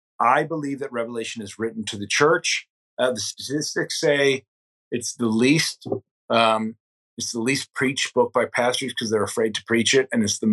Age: 30-49